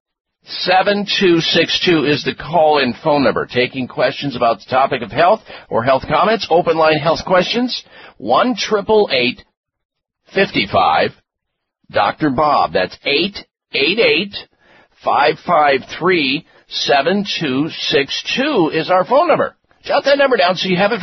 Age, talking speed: 50-69, 105 wpm